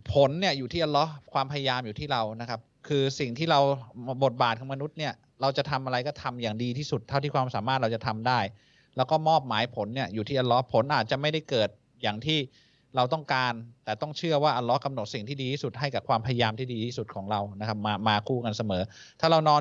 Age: 20-39